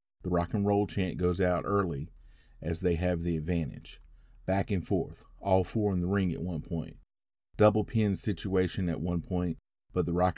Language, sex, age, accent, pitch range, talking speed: English, male, 30-49, American, 90-105 Hz, 190 wpm